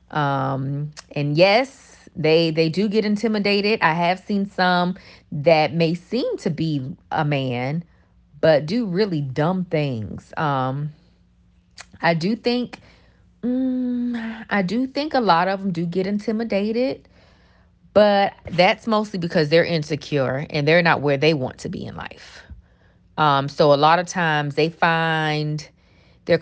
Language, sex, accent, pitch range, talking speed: English, female, American, 145-195 Hz, 145 wpm